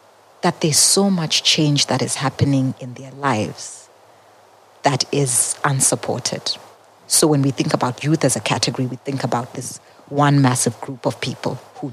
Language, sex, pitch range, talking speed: English, female, 130-150 Hz, 165 wpm